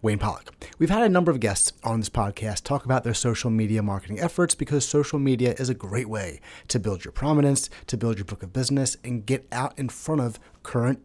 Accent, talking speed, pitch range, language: American, 230 wpm, 115-155 Hz, English